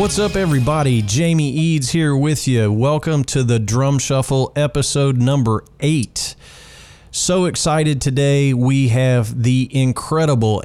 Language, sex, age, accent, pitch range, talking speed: English, male, 40-59, American, 110-135 Hz, 130 wpm